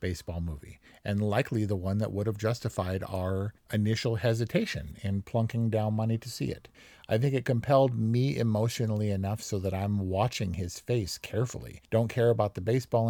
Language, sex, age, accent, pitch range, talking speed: English, male, 50-69, American, 95-115 Hz, 180 wpm